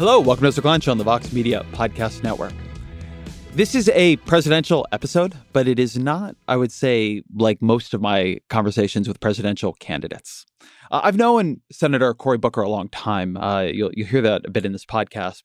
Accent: American